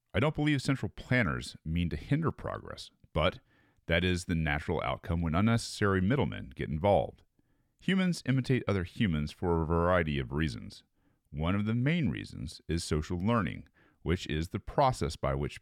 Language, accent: English, American